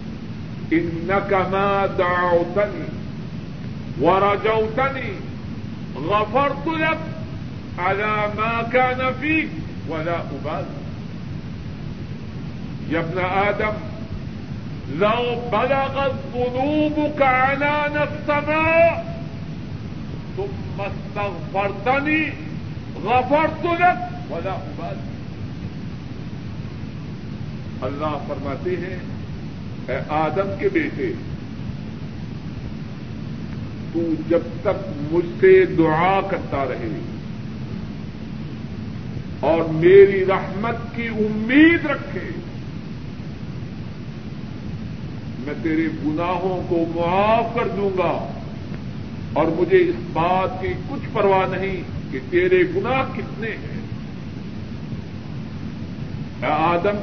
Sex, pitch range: male, 165-250 Hz